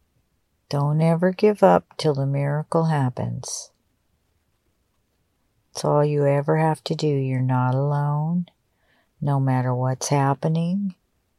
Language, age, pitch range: English, 50-69, 130-175 Hz